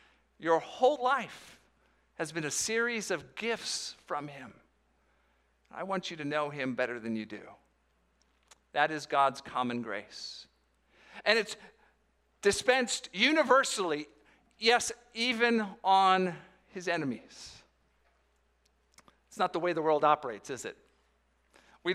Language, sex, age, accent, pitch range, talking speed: English, male, 50-69, American, 130-195 Hz, 125 wpm